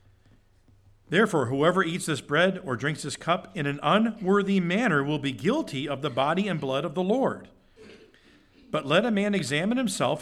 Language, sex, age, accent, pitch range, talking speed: English, male, 50-69, American, 110-175 Hz, 175 wpm